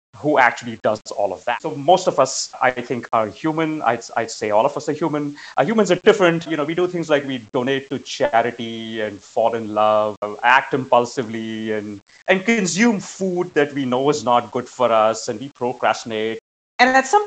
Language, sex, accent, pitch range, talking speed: English, male, Indian, 115-195 Hz, 210 wpm